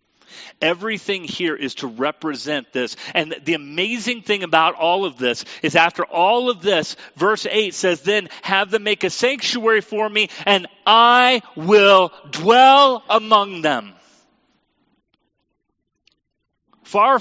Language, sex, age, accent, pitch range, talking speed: English, male, 40-59, American, 170-220 Hz, 130 wpm